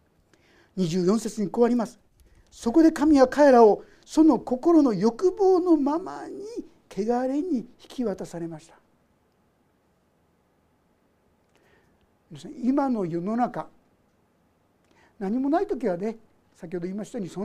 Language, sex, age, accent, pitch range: Japanese, male, 60-79, native, 205-300 Hz